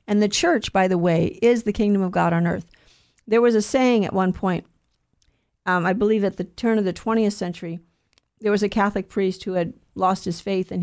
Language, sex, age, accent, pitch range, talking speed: English, female, 50-69, American, 190-245 Hz, 225 wpm